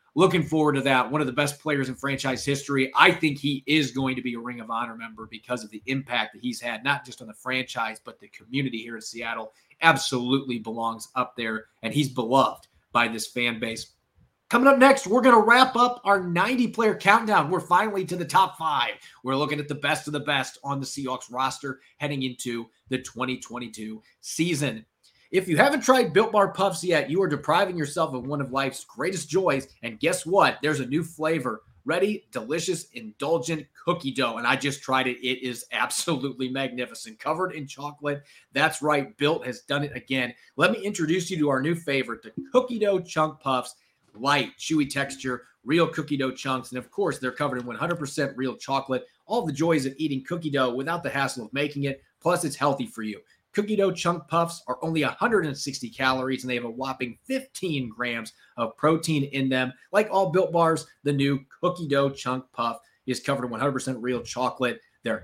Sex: male